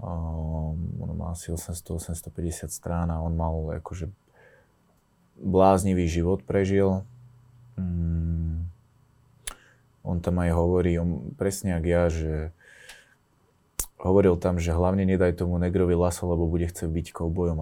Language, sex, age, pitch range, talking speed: Slovak, male, 20-39, 80-90 Hz, 125 wpm